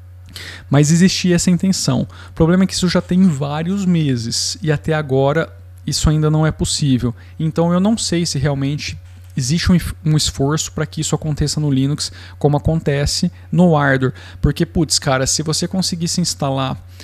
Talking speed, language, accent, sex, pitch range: 165 wpm, Portuguese, Brazilian, male, 95-150 Hz